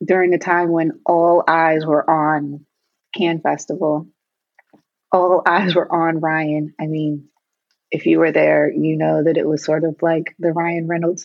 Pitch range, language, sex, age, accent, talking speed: 155-175 Hz, English, female, 30-49, American, 170 wpm